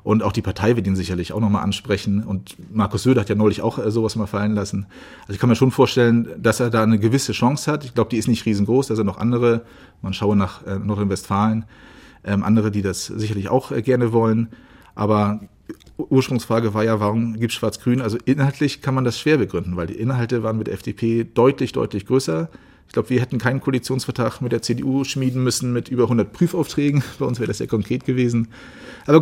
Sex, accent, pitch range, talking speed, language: male, German, 105-125 Hz, 210 wpm, German